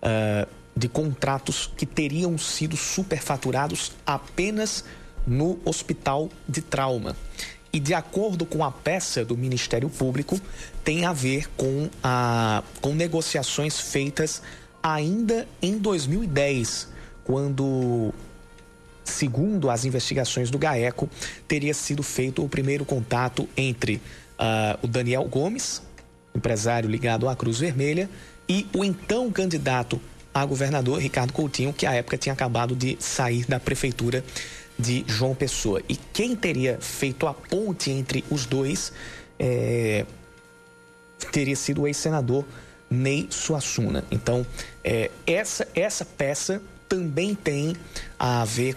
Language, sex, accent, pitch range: Portuguese, male, Brazilian, 125-155 Hz